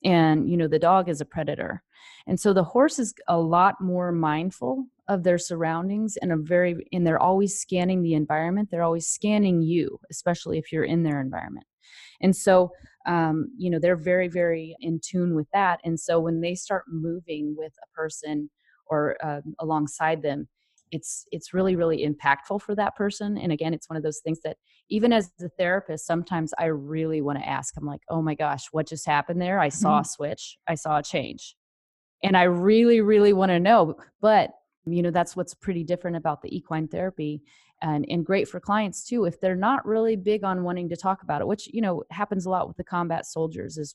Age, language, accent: 30-49, English, American